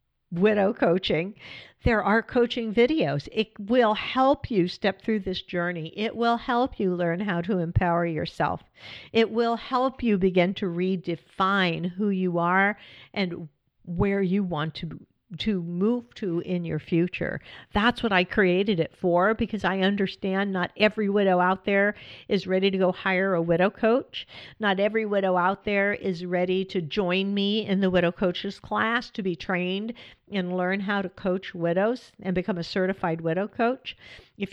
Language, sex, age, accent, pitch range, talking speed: English, female, 50-69, American, 180-215 Hz, 170 wpm